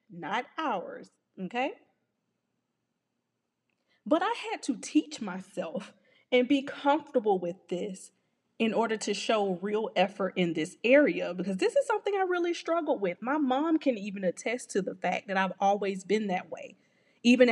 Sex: female